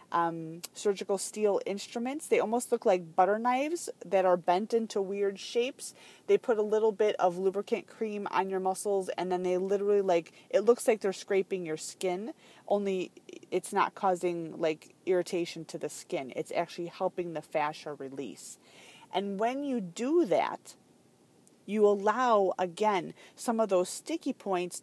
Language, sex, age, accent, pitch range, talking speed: English, female, 30-49, American, 175-215 Hz, 160 wpm